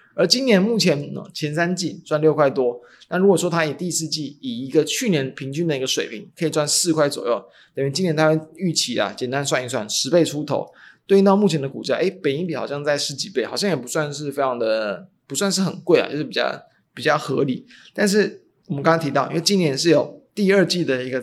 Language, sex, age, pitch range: Chinese, male, 20-39, 135-175 Hz